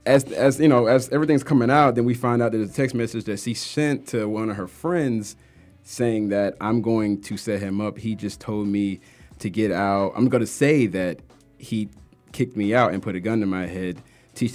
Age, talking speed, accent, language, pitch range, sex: 30-49, 230 wpm, American, English, 100-130 Hz, male